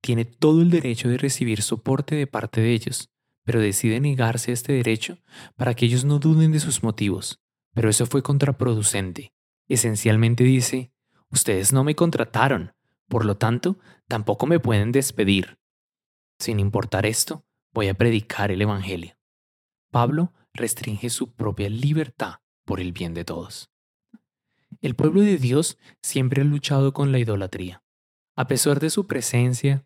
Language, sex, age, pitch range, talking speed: Spanish, male, 20-39, 110-140 Hz, 150 wpm